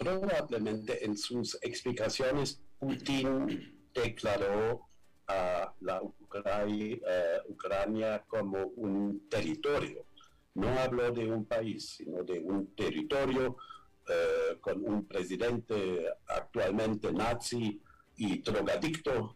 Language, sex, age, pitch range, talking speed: Spanish, male, 60-79, 110-150 Hz, 90 wpm